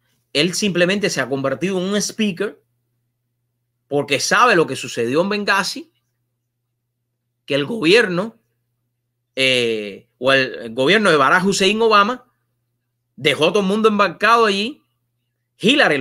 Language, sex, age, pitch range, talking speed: English, male, 30-49, 120-200 Hz, 130 wpm